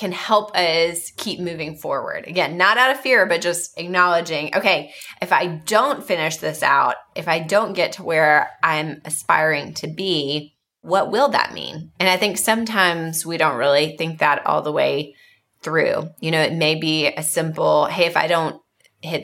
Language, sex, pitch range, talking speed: English, female, 155-185 Hz, 185 wpm